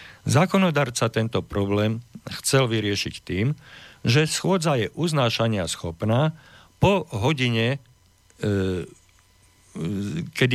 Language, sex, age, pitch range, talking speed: Slovak, male, 50-69, 95-125 Hz, 80 wpm